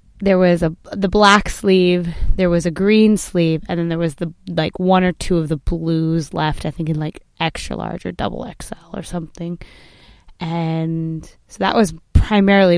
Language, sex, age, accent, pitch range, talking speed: English, female, 20-39, American, 165-190 Hz, 190 wpm